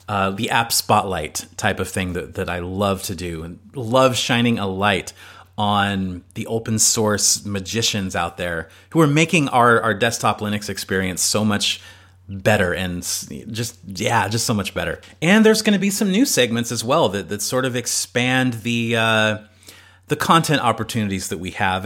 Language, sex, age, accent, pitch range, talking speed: English, male, 30-49, American, 95-125 Hz, 180 wpm